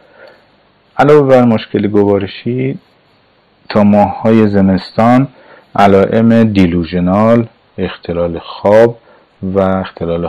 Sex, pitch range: male, 90-110 Hz